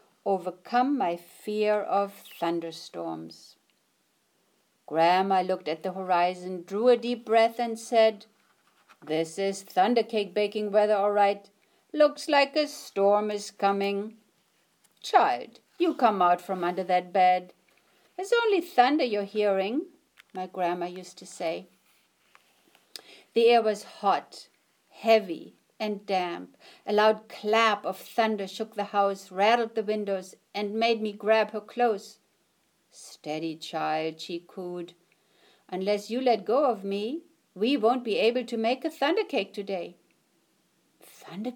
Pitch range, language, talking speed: 185-240 Hz, English, 135 wpm